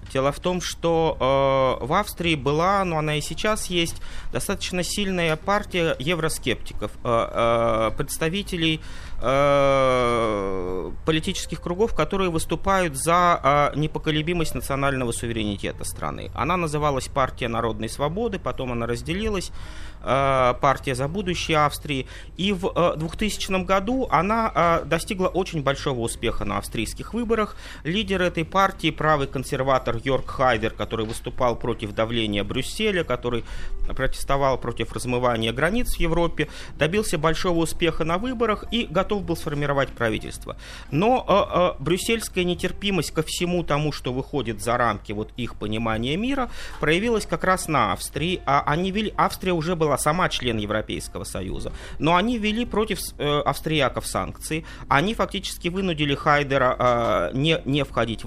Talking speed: 135 wpm